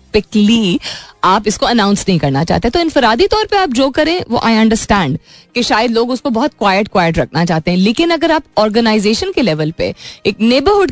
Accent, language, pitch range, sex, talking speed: native, Hindi, 185-260 Hz, female, 190 wpm